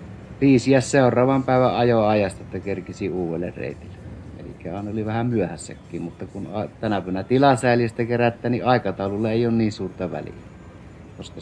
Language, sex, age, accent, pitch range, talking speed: Finnish, male, 60-79, native, 90-115 Hz, 145 wpm